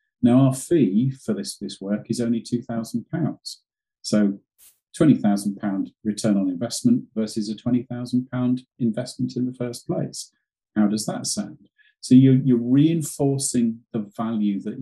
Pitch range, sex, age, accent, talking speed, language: 105-140 Hz, male, 40-59, British, 140 wpm, English